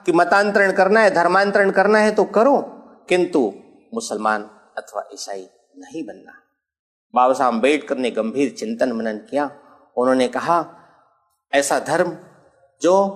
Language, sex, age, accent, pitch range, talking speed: Hindi, male, 50-69, native, 165-225 Hz, 130 wpm